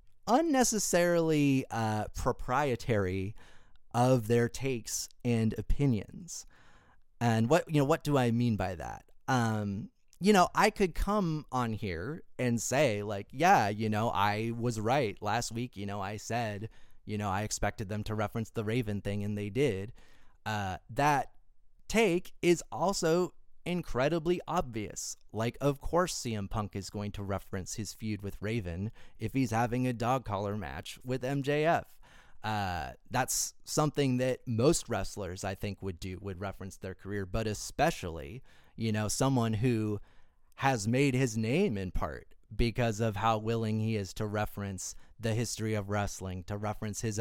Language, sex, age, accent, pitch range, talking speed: English, male, 30-49, American, 100-130 Hz, 160 wpm